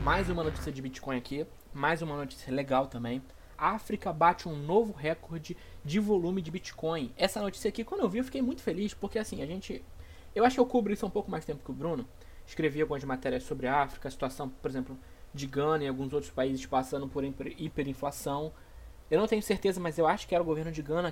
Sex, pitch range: male, 140-200 Hz